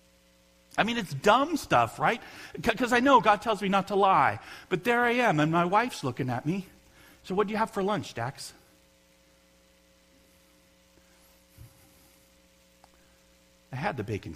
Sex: male